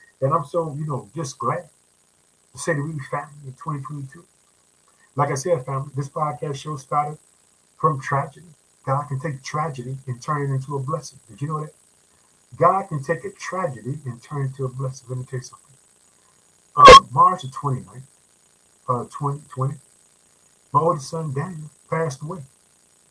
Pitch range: 135-165 Hz